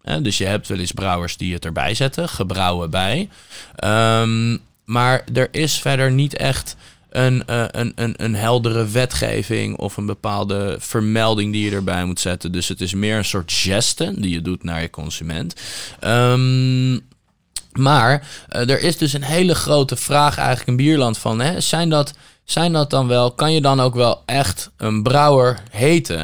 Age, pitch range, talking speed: 20-39, 95-135 Hz, 165 wpm